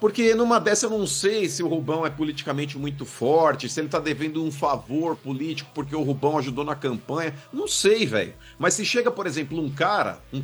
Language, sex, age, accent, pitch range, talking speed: Portuguese, male, 50-69, Brazilian, 140-210 Hz, 215 wpm